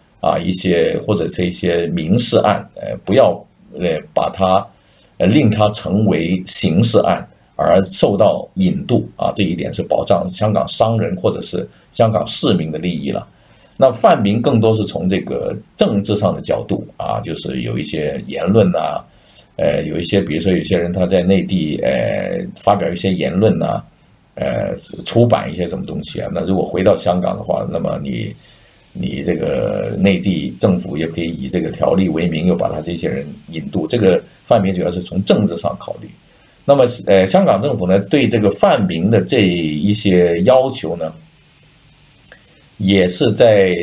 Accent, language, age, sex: native, Chinese, 50-69, male